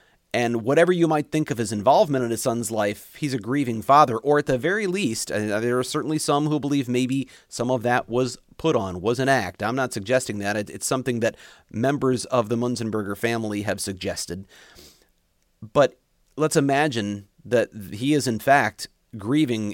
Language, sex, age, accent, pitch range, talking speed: English, male, 30-49, American, 115-150 Hz, 180 wpm